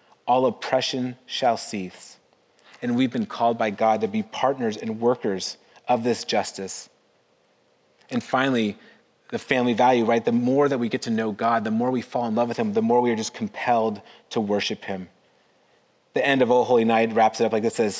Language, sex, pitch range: English, male, 105-140 Hz